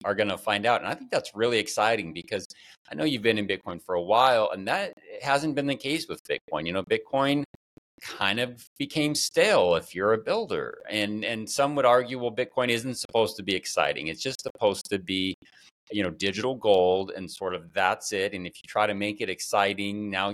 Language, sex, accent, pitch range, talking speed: English, male, American, 95-125 Hz, 220 wpm